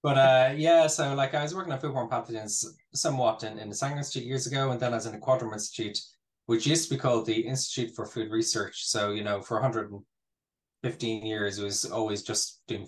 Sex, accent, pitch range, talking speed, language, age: male, Irish, 105-130 Hz, 225 wpm, English, 20-39